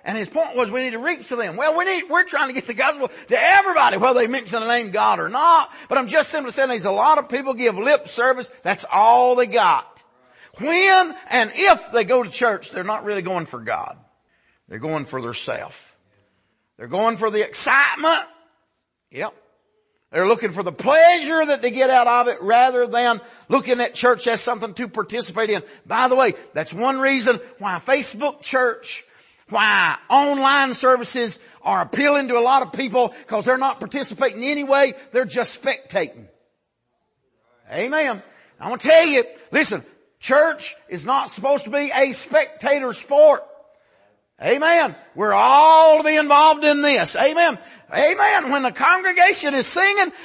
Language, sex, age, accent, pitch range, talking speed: English, male, 50-69, American, 230-305 Hz, 180 wpm